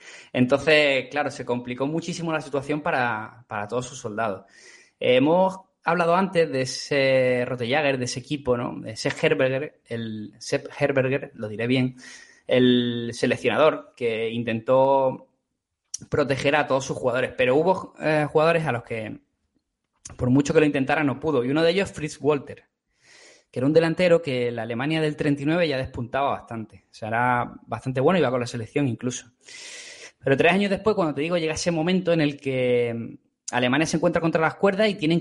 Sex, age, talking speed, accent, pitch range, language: male, 20-39, 175 wpm, Spanish, 125-160 Hz, Spanish